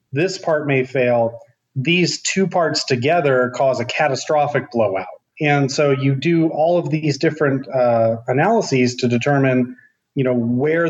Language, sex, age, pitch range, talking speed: English, male, 30-49, 125-150 Hz, 150 wpm